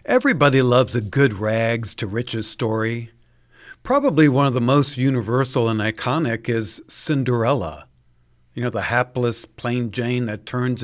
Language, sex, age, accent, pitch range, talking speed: English, male, 50-69, American, 105-145 Hz, 135 wpm